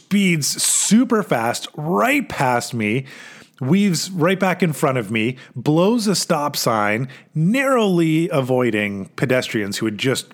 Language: English